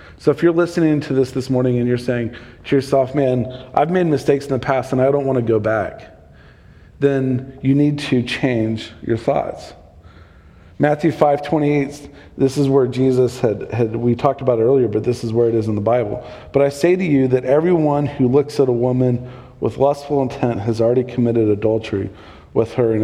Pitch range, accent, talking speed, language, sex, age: 115-140 Hz, American, 205 wpm, English, male, 40-59